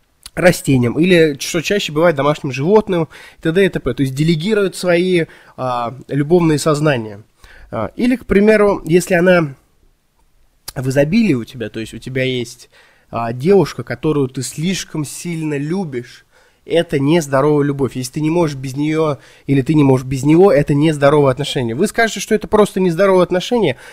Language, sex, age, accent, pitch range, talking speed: Russian, male, 20-39, native, 135-180 Hz, 155 wpm